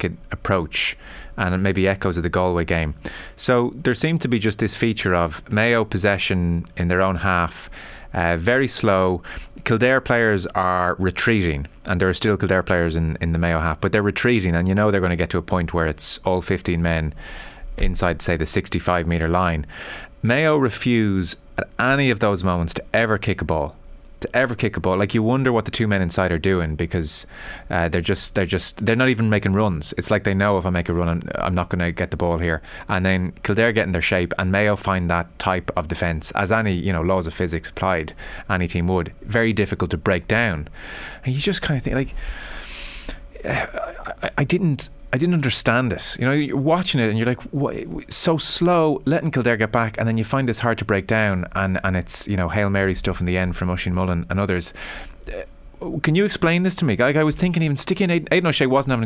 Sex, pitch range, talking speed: male, 90-120 Hz, 230 wpm